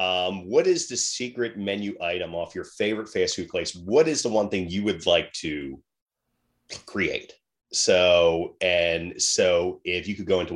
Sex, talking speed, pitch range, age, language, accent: male, 175 wpm, 90-105 Hz, 30-49, English, American